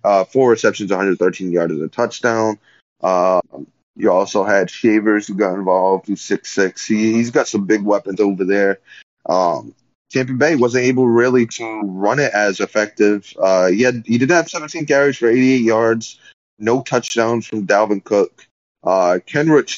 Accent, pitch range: American, 100-120 Hz